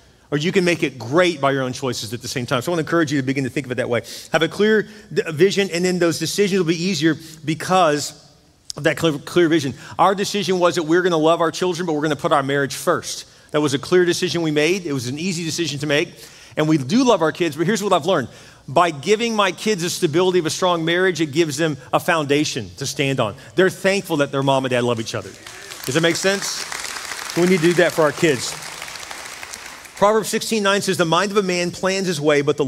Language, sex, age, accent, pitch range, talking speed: English, male, 40-59, American, 145-185 Hz, 260 wpm